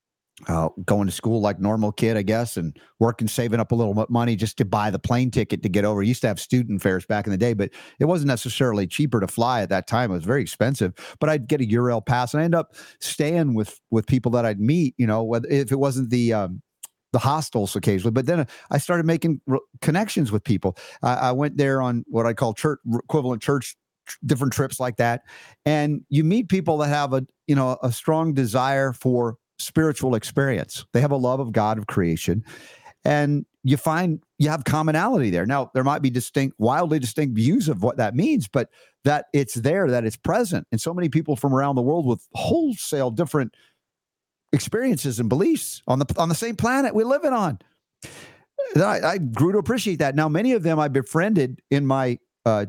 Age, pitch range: 50-69, 115-150 Hz